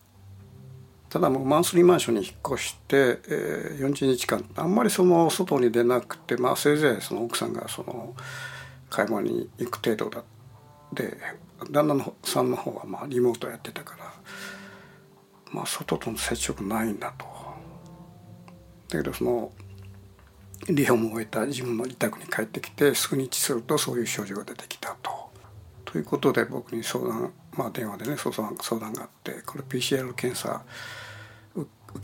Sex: male